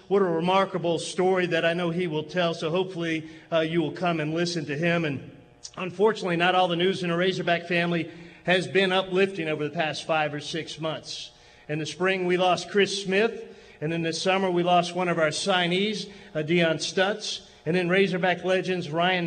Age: 40-59